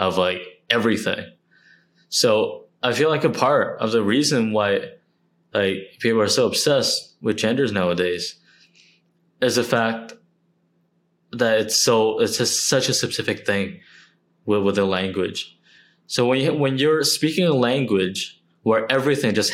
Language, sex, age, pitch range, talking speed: English, male, 20-39, 95-125 Hz, 145 wpm